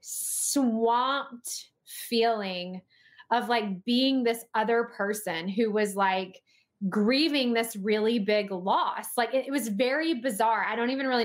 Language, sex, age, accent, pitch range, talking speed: English, female, 20-39, American, 195-240 Hz, 140 wpm